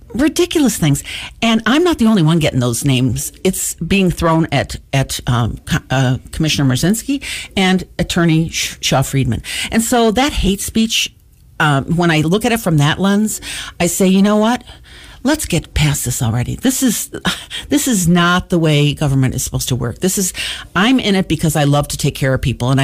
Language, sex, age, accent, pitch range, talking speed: English, female, 50-69, American, 145-195 Hz, 195 wpm